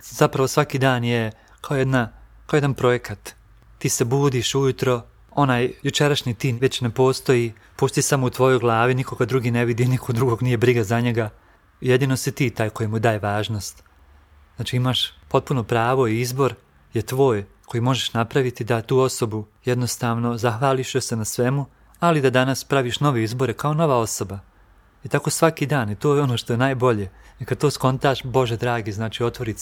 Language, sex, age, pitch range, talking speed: Croatian, male, 30-49, 115-130 Hz, 180 wpm